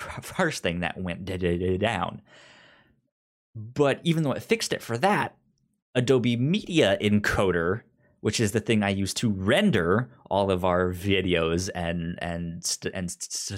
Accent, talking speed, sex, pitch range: American, 135 wpm, male, 95-120 Hz